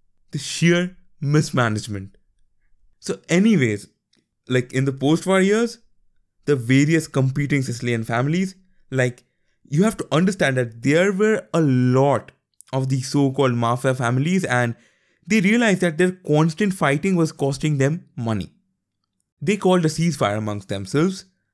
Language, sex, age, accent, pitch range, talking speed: English, male, 20-39, Indian, 120-175 Hz, 130 wpm